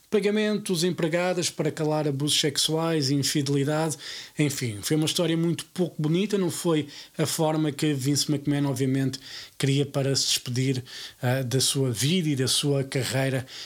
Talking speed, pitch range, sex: 155 wpm, 135-165 Hz, male